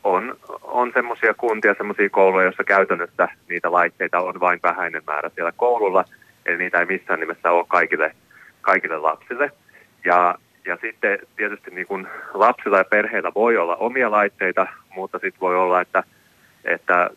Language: Finnish